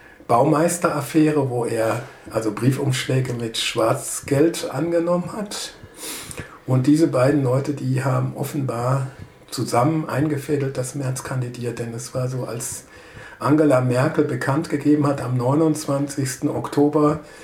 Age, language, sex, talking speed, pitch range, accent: 60-79, English, male, 120 wpm, 125-150 Hz, German